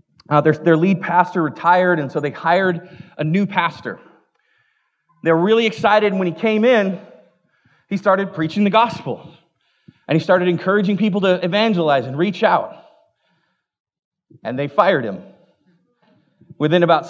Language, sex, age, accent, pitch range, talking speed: English, male, 30-49, American, 160-210 Hz, 150 wpm